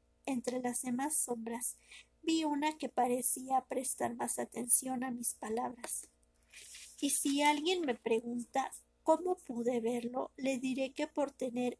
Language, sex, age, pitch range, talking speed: Spanish, female, 50-69, 235-275 Hz, 135 wpm